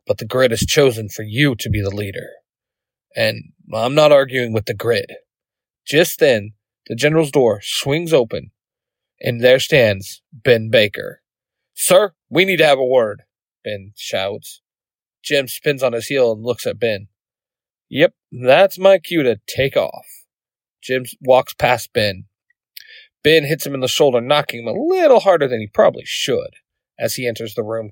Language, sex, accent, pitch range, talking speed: English, male, American, 115-175 Hz, 170 wpm